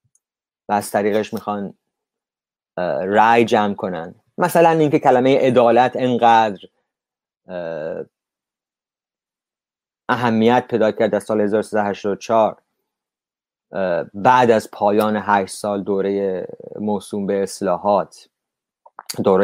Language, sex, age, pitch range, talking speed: English, male, 30-49, 100-125 Hz, 85 wpm